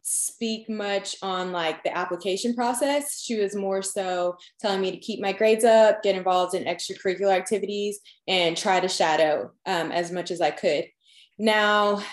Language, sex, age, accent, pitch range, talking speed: English, female, 20-39, American, 175-215 Hz, 170 wpm